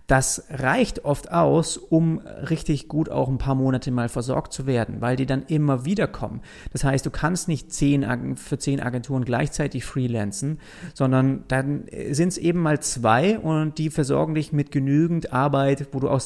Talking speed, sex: 180 wpm, male